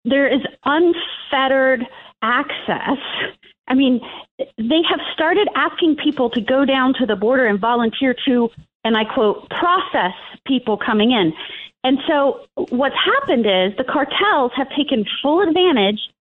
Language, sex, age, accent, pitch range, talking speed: English, female, 30-49, American, 220-300 Hz, 140 wpm